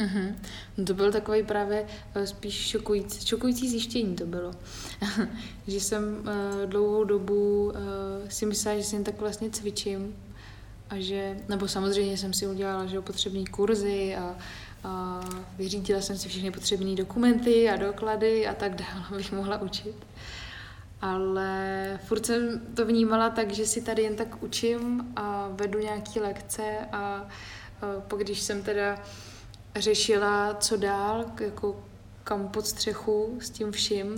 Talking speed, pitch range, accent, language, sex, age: 140 wpm, 195-215 Hz, native, Czech, female, 20-39